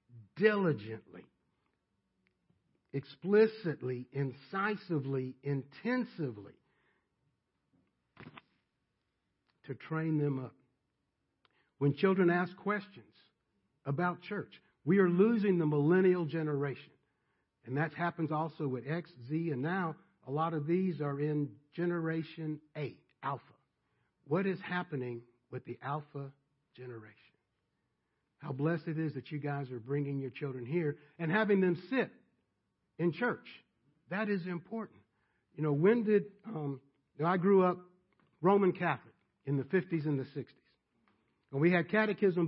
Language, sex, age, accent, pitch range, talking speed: English, male, 60-79, American, 140-190 Hz, 125 wpm